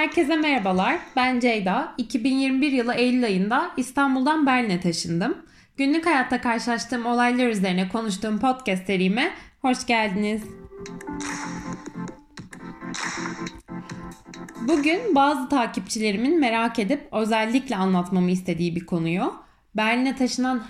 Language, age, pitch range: Turkish, 10-29, 200-275 Hz